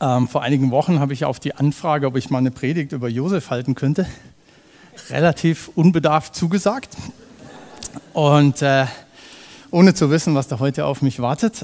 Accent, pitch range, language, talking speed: German, 130-165 Hz, German, 160 wpm